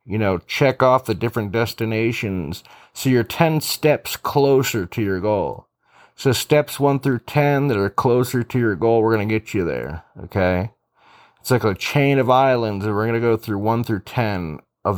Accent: American